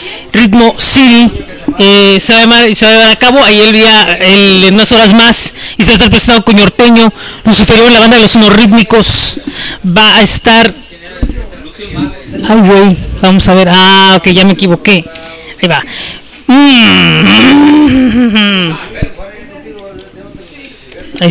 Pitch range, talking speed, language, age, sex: 195-235 Hz, 135 wpm, Spanish, 30-49, female